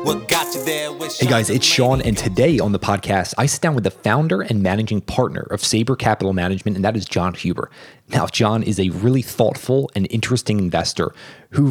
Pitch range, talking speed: 100-130 Hz, 190 wpm